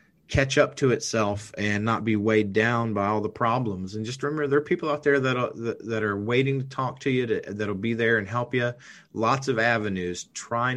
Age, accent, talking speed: 30-49, American, 230 wpm